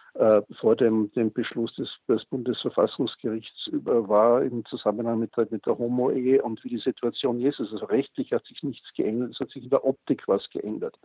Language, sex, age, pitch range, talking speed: German, male, 60-79, 115-140 Hz, 175 wpm